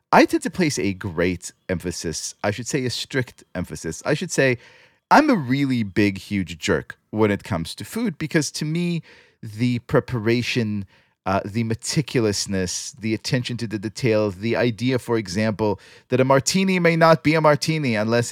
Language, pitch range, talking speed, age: English, 105-140 Hz, 175 wpm, 30-49